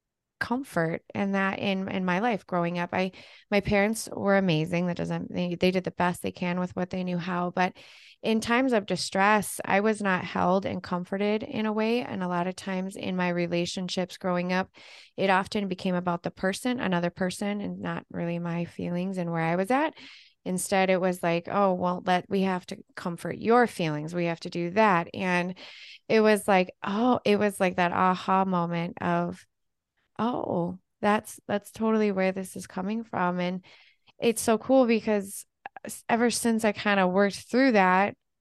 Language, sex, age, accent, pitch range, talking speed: English, female, 20-39, American, 180-225 Hz, 190 wpm